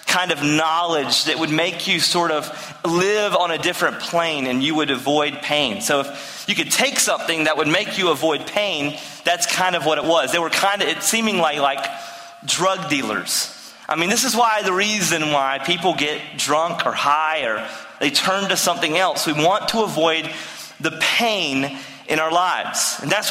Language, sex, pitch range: English, male, 160-205 Hz